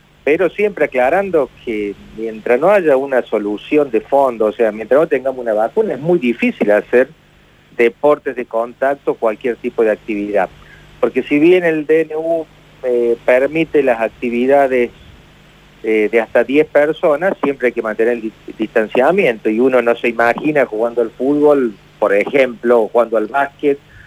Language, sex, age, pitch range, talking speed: Spanish, male, 40-59, 110-135 Hz, 160 wpm